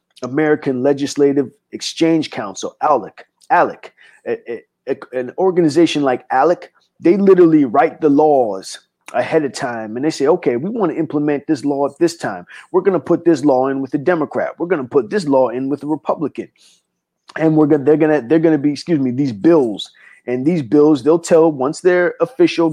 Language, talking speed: English, 200 wpm